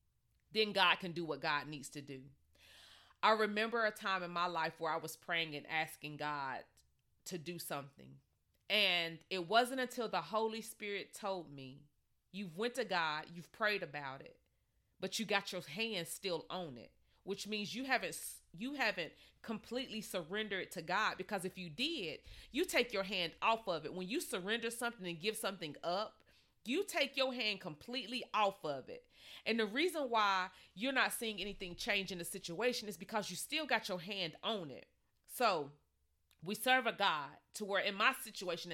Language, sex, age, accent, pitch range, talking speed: English, female, 30-49, American, 170-230 Hz, 185 wpm